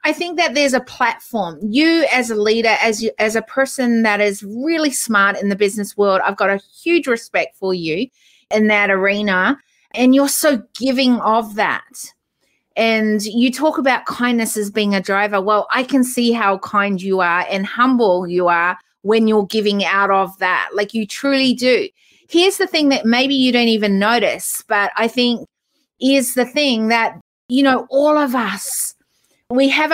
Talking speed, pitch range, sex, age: 185 wpm, 210-270 Hz, female, 30-49